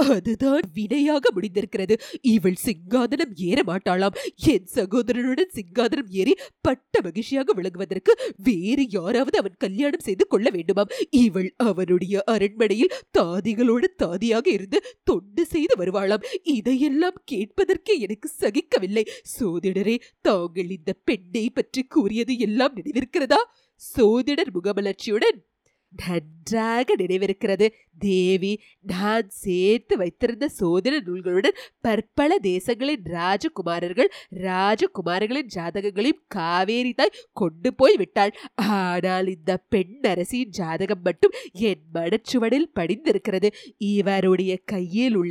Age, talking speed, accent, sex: 30-49, 95 wpm, native, female